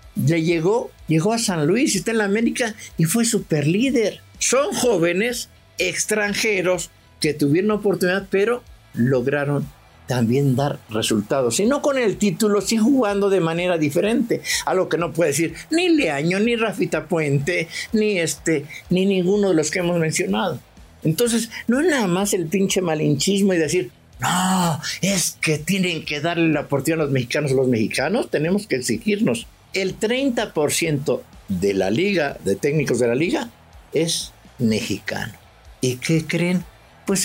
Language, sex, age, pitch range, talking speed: English, male, 50-69, 150-210 Hz, 160 wpm